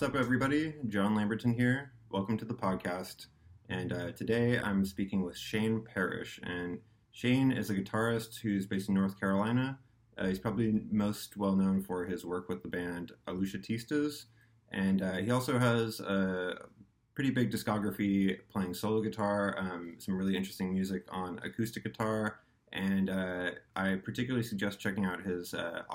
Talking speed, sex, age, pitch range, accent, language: 160 wpm, male, 20-39, 95-110 Hz, American, English